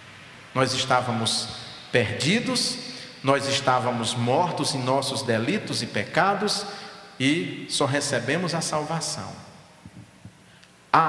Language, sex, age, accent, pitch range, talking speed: Portuguese, male, 40-59, Brazilian, 120-165 Hz, 90 wpm